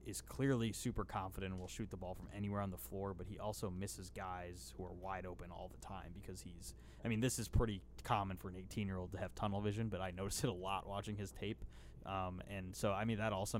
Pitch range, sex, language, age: 95-110 Hz, male, English, 20-39